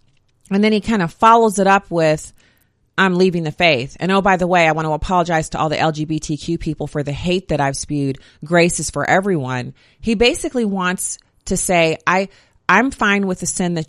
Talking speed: 210 wpm